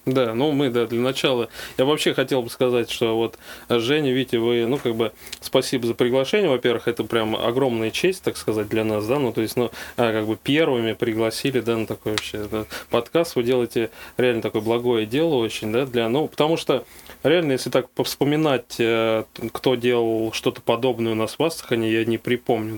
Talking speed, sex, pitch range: 195 wpm, male, 110-125 Hz